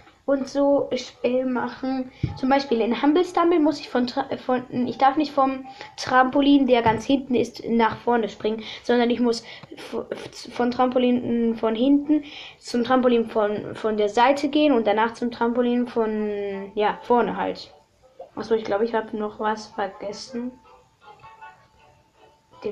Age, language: 20-39, German